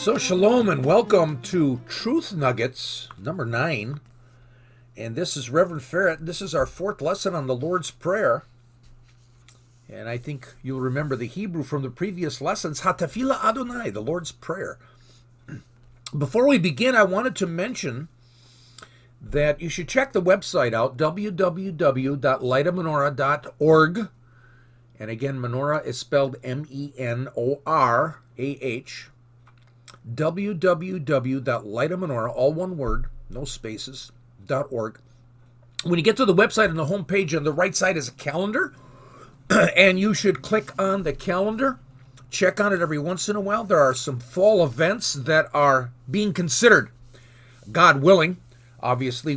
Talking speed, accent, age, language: 135 wpm, American, 50-69, English